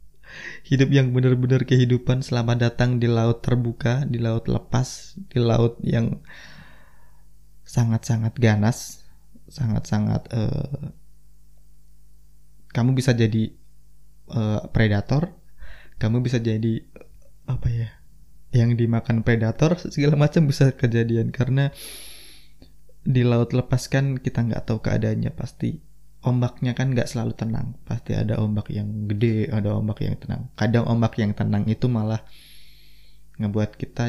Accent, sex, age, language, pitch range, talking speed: native, male, 20-39, Indonesian, 105-130 Hz, 120 wpm